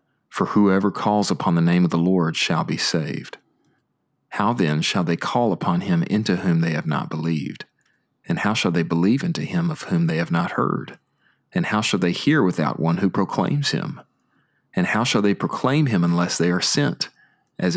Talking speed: 200 wpm